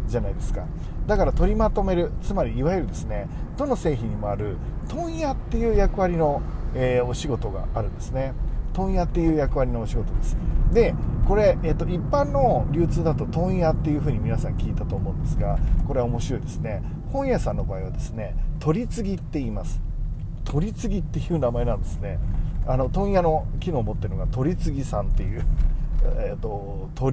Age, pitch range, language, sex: 40-59, 105-170 Hz, Japanese, male